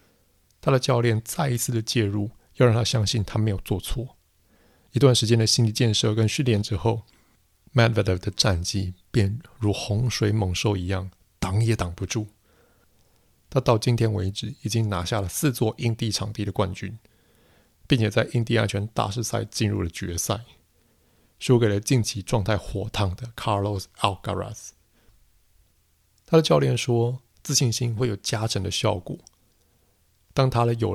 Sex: male